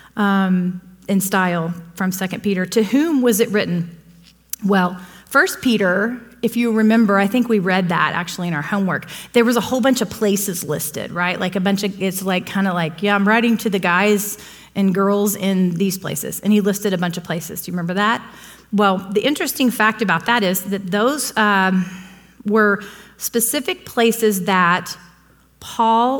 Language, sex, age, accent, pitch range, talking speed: English, female, 30-49, American, 185-230 Hz, 185 wpm